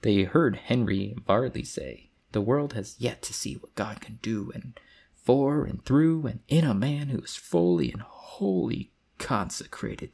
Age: 30-49